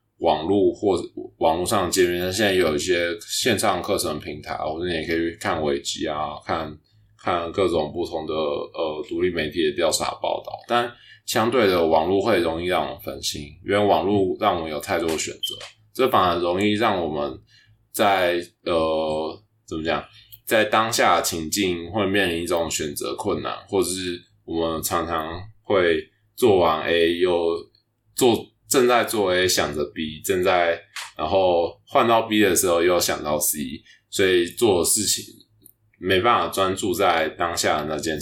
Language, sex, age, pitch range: Chinese, male, 20-39, 85-110 Hz